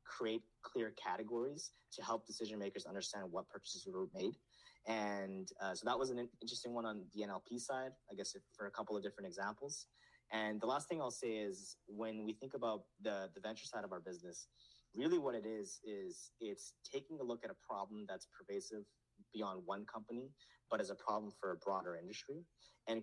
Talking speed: 200 wpm